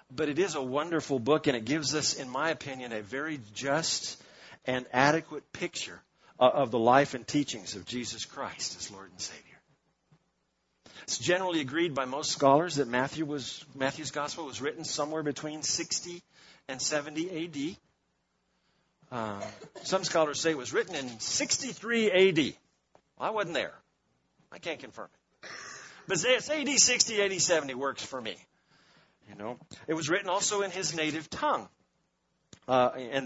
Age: 50-69